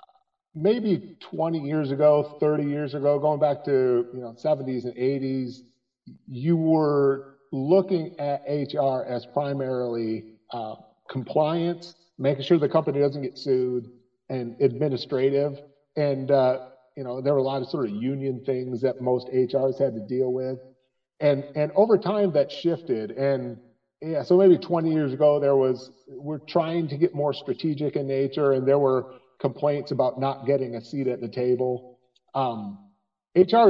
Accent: American